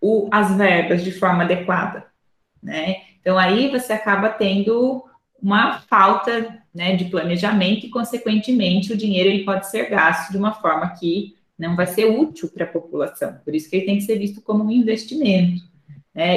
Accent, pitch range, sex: Brazilian, 175-215 Hz, female